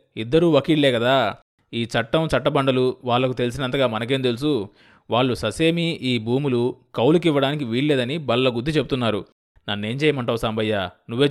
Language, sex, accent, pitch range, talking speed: Telugu, male, native, 110-155 Hz, 120 wpm